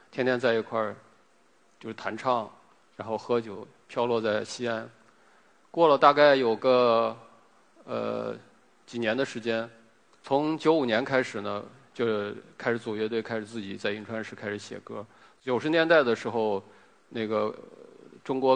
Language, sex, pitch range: Chinese, male, 110-130 Hz